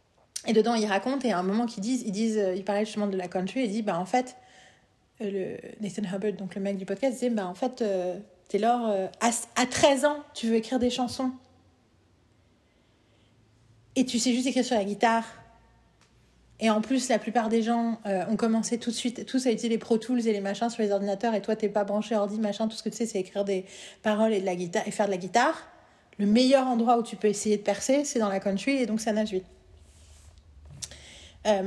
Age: 30-49